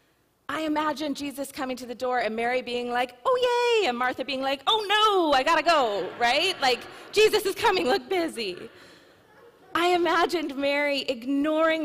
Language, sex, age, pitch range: English, female, 30-49, 245-315 Hz